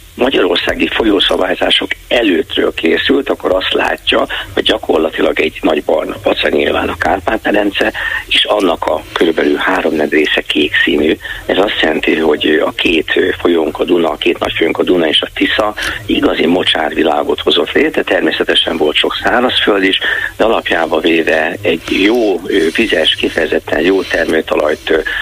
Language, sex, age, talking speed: Hungarian, male, 50-69, 140 wpm